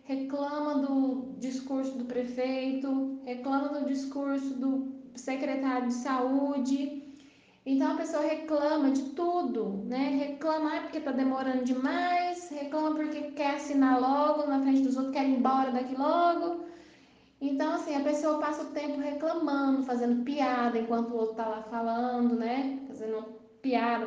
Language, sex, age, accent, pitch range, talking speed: Portuguese, female, 10-29, Brazilian, 245-295 Hz, 140 wpm